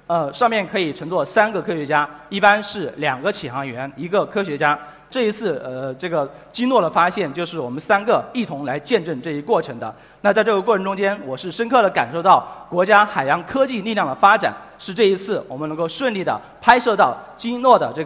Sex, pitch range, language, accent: male, 160-230 Hz, Chinese, native